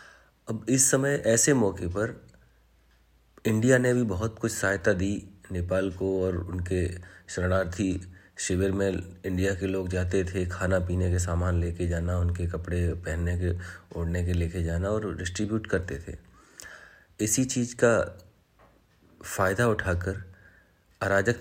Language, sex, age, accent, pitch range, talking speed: Hindi, male, 30-49, native, 90-105 Hz, 135 wpm